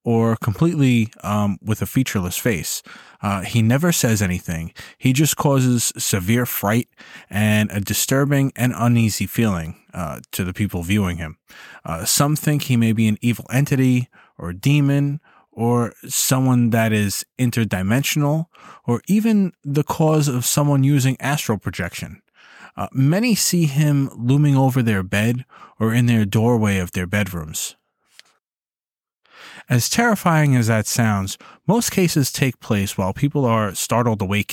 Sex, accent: male, American